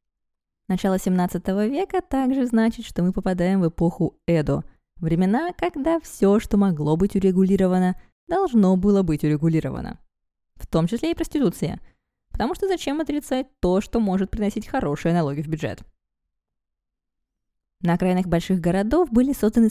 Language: Russian